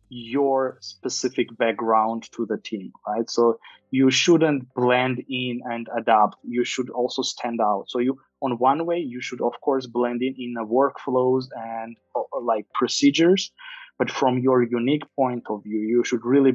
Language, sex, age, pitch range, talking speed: English, male, 20-39, 115-130 Hz, 165 wpm